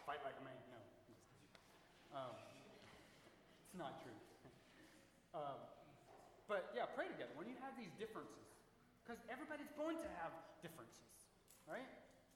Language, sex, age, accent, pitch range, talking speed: English, male, 30-49, American, 140-215 Hz, 125 wpm